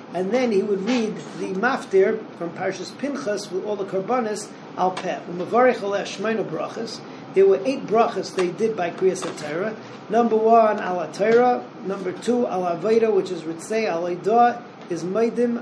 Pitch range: 180-230 Hz